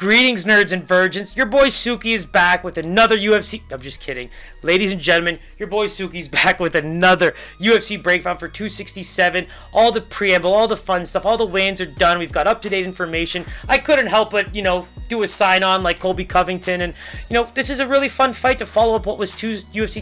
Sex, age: male, 20-39